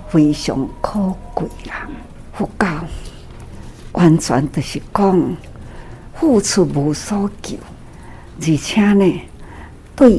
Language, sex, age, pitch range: Chinese, female, 60-79, 145-190 Hz